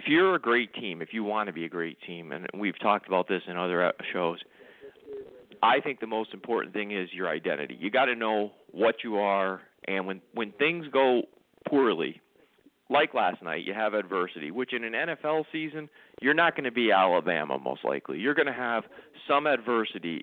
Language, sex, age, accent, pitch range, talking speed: English, male, 40-59, American, 100-140 Hz, 200 wpm